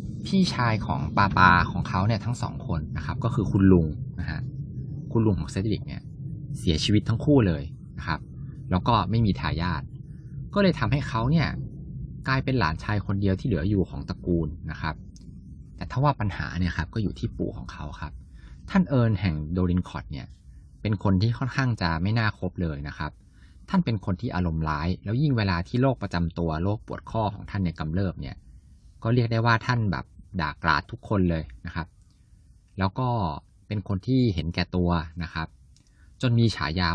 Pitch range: 85-115 Hz